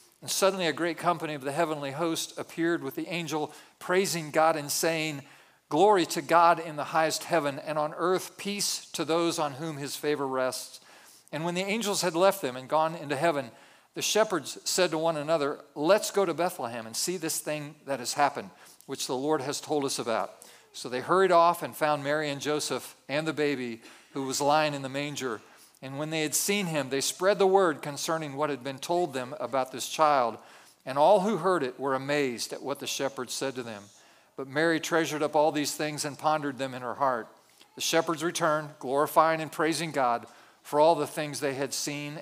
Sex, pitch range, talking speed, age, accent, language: male, 135-170 Hz, 210 wpm, 50-69, American, English